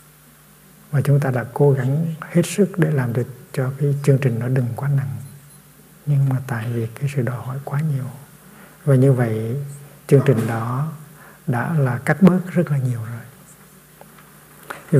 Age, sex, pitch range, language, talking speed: 60-79, male, 130-150 Hz, Vietnamese, 175 wpm